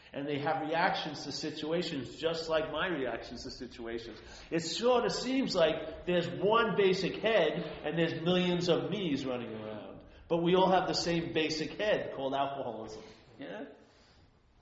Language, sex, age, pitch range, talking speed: English, male, 50-69, 130-180 Hz, 160 wpm